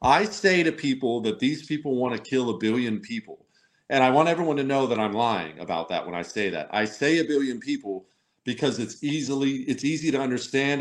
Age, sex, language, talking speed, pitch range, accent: 40-59, male, English, 220 wpm, 120-160 Hz, American